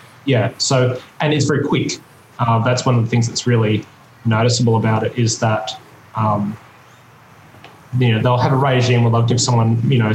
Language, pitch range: English, 115-135 Hz